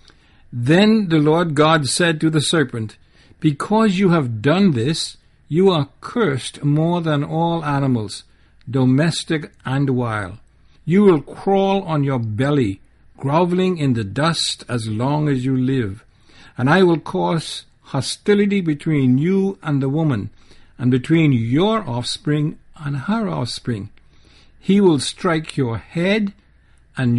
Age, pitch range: 60-79, 125-170 Hz